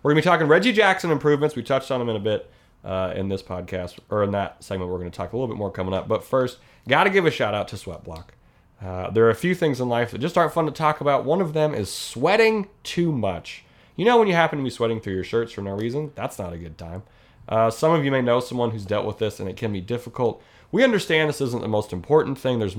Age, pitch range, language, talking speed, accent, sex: 30-49, 100-140 Hz, English, 285 wpm, American, male